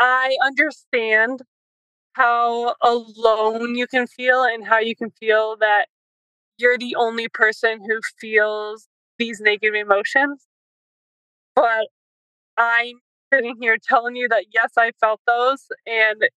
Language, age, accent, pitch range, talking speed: English, 20-39, American, 205-235 Hz, 125 wpm